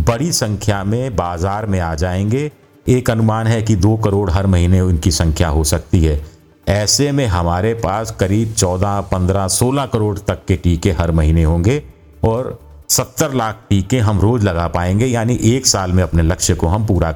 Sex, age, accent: male, 50-69, native